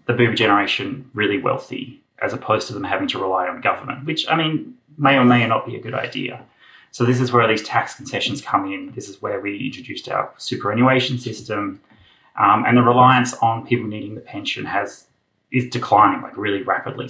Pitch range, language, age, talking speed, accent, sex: 110-125 Hz, English, 20-39, 195 wpm, Australian, male